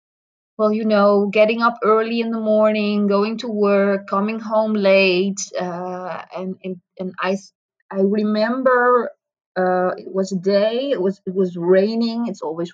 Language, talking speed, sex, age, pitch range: English, 160 wpm, female, 20-39, 190-215 Hz